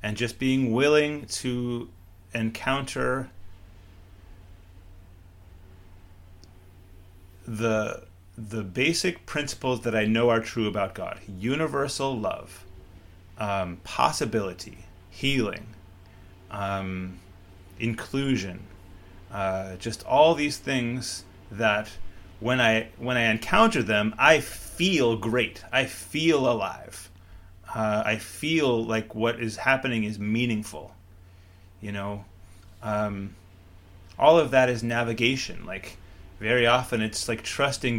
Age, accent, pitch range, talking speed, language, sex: 30-49, American, 90-120 Hz, 105 wpm, English, male